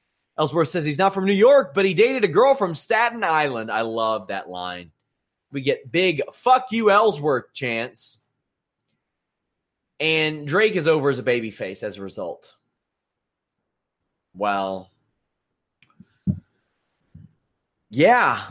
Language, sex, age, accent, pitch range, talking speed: English, male, 30-49, American, 125-175 Hz, 125 wpm